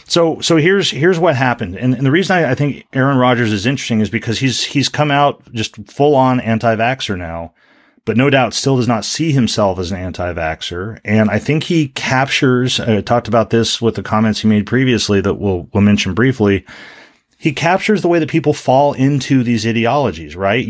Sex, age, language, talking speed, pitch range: male, 40-59, English, 205 wpm, 100-130 Hz